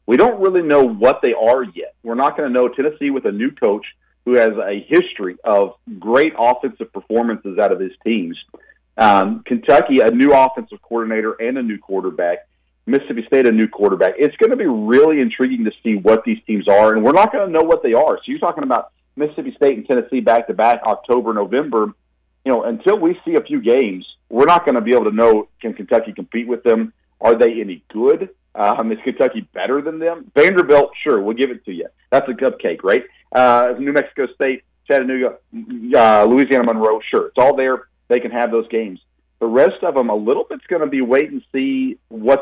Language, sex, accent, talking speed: English, male, American, 210 wpm